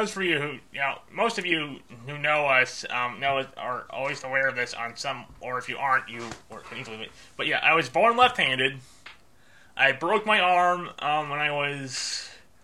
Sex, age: male, 20-39